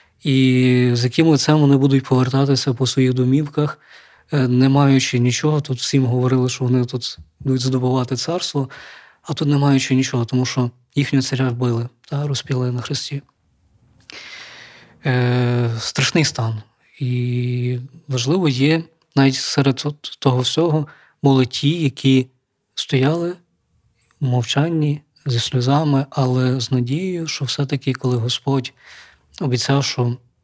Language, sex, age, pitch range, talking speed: Ukrainian, male, 20-39, 125-145 Hz, 120 wpm